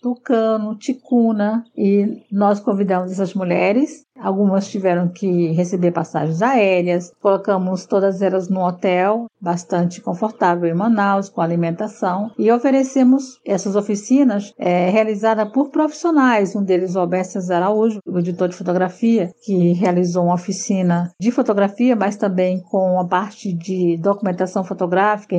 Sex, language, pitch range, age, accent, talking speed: female, Portuguese, 185-215 Hz, 50-69, Brazilian, 130 wpm